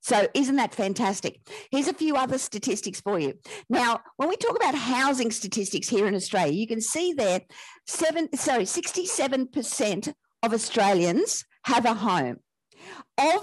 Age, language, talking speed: 50-69, English, 150 wpm